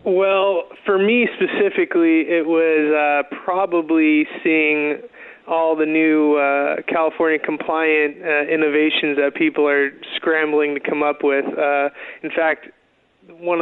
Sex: male